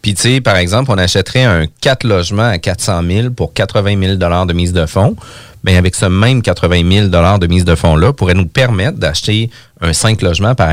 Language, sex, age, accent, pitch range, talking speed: French, male, 30-49, Canadian, 90-120 Hz, 220 wpm